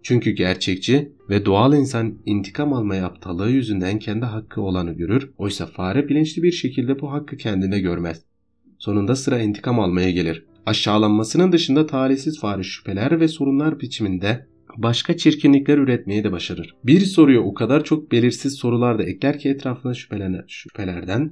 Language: Turkish